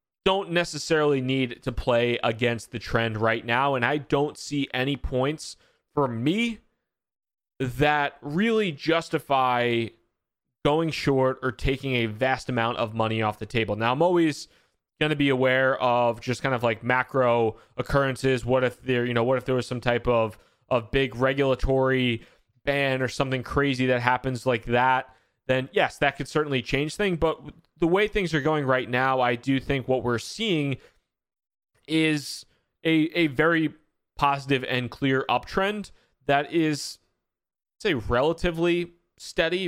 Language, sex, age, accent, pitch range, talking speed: English, male, 20-39, American, 125-155 Hz, 160 wpm